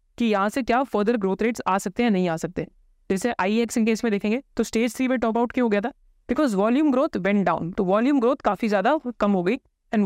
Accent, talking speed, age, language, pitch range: native, 160 wpm, 20-39, Hindi, 200-245 Hz